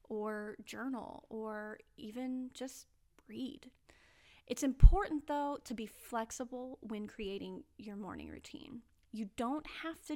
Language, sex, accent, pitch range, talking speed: English, female, American, 215-275 Hz, 125 wpm